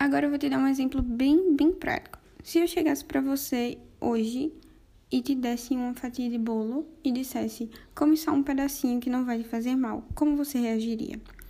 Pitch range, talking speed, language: 245-280 Hz, 200 wpm, Portuguese